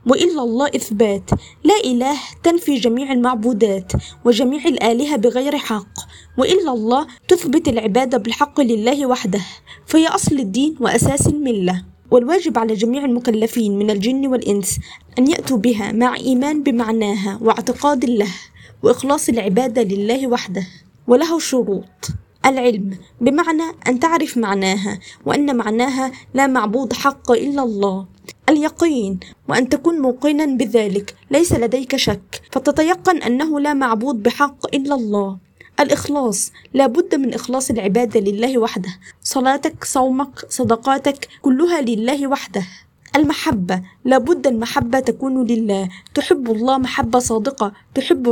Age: 20-39